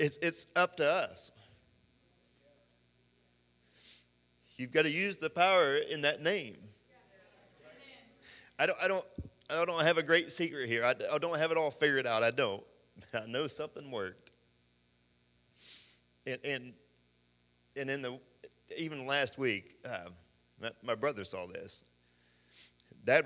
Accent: American